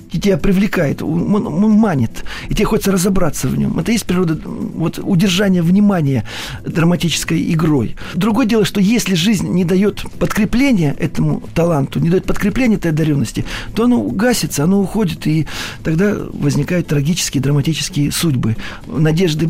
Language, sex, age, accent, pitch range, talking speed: Russian, male, 40-59, native, 145-185 Hz, 140 wpm